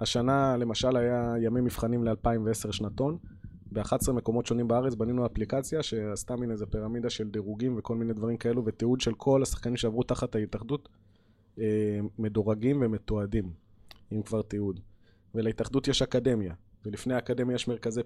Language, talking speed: Hebrew, 140 wpm